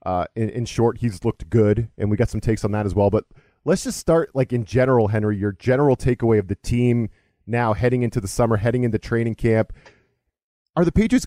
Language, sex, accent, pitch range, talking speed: English, male, American, 115-150 Hz, 225 wpm